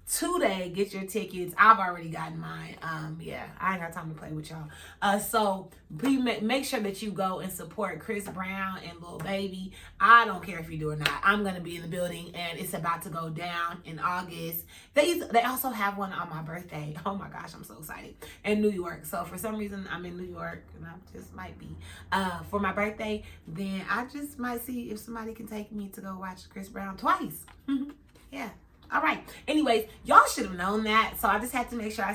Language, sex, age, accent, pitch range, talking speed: English, female, 30-49, American, 160-205 Hz, 230 wpm